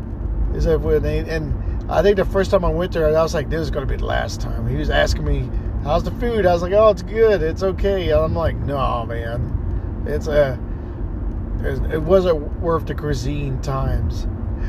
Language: English